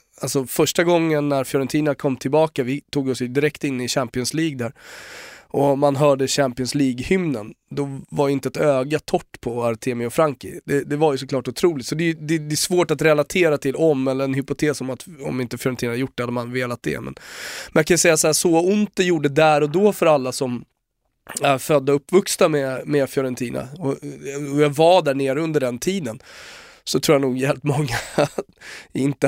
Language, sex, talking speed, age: Swedish, male, 200 wpm, 20-39